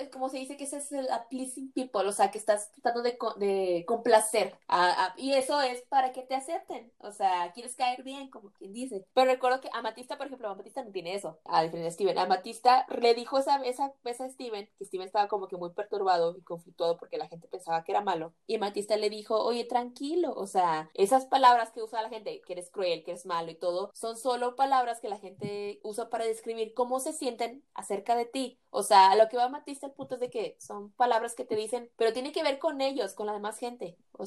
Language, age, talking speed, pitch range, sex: Spanish, 20-39, 235 wpm, 205-265 Hz, female